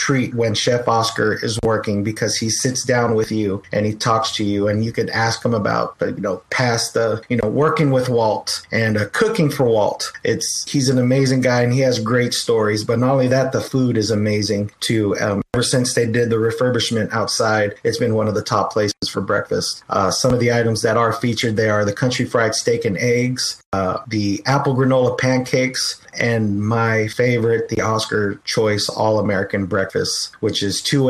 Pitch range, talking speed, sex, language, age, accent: 110-130 Hz, 205 wpm, male, English, 30-49, American